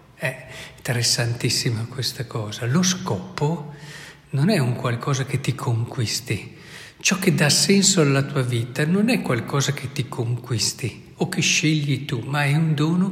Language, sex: Italian, male